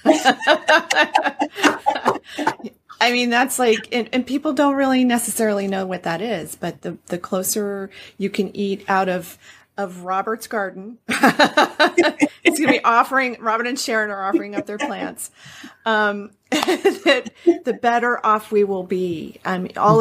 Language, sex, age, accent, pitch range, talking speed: English, female, 40-59, American, 180-220 Hz, 150 wpm